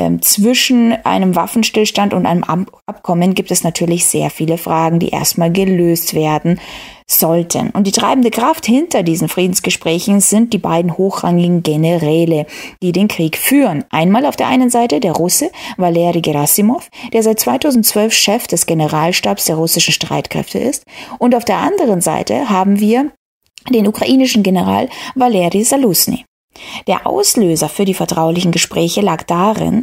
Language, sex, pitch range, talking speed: German, female, 170-240 Hz, 145 wpm